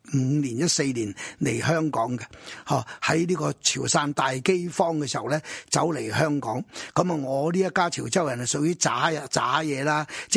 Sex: male